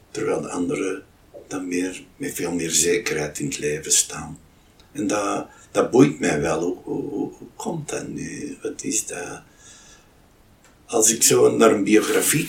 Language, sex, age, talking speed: Dutch, male, 60-79, 165 wpm